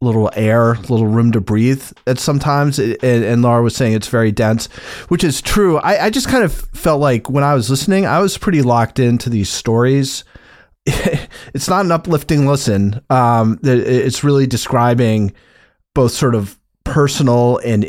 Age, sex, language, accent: 30-49, male, English, American